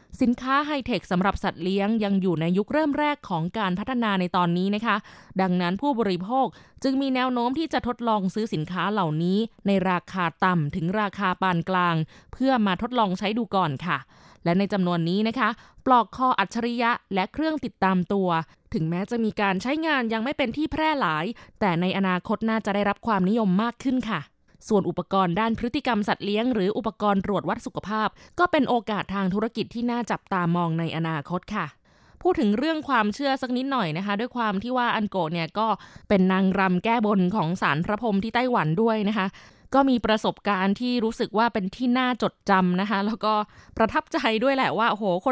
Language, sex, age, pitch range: Thai, female, 20-39, 190-245 Hz